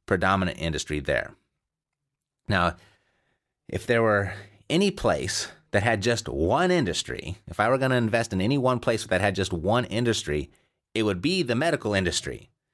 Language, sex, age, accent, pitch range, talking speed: English, male, 30-49, American, 90-120 Hz, 165 wpm